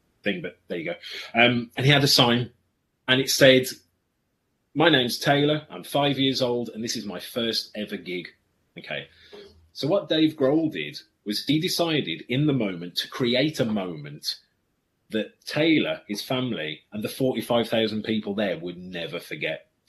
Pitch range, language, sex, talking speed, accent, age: 115-145 Hz, English, male, 170 wpm, British, 30-49